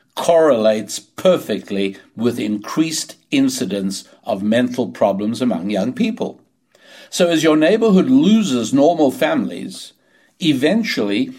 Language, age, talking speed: English, 60-79, 100 wpm